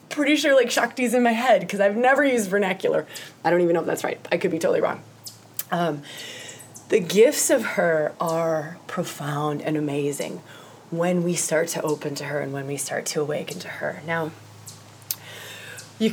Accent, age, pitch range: American, 20-39, 165-245 Hz